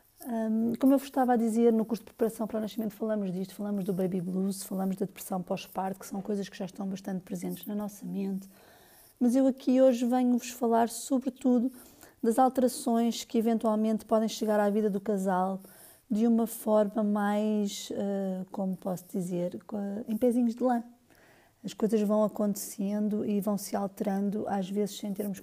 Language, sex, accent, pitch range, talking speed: Portuguese, female, Brazilian, 200-235 Hz, 175 wpm